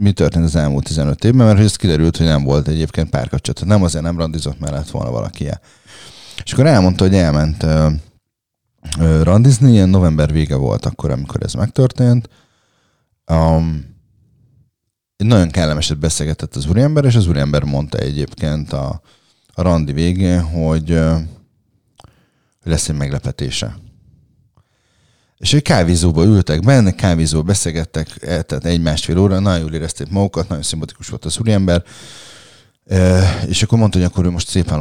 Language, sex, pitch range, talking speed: Hungarian, male, 80-105 Hz, 140 wpm